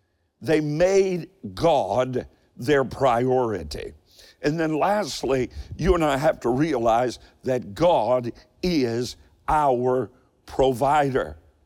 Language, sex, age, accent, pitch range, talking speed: English, male, 60-79, American, 125-160 Hz, 100 wpm